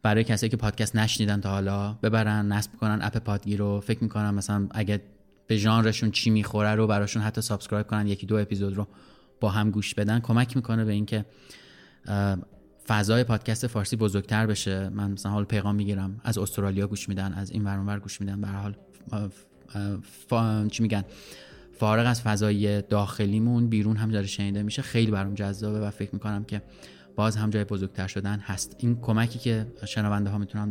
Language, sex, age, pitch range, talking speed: Persian, male, 20-39, 105-115 Hz, 175 wpm